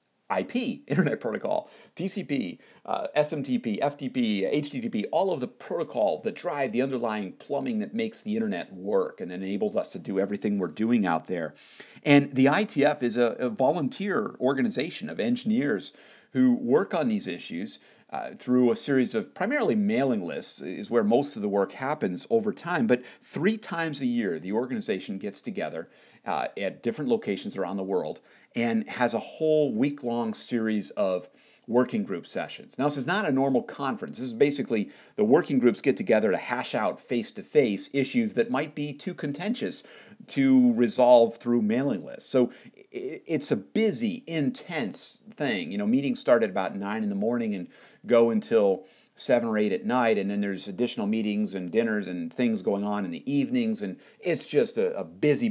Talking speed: 175 wpm